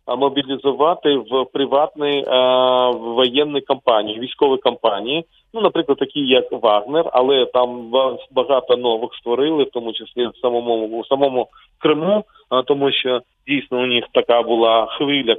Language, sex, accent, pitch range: Ukrainian, male, native, 120-145 Hz